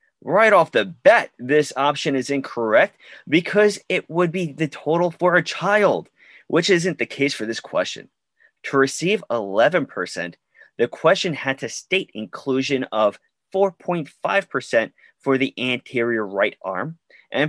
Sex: male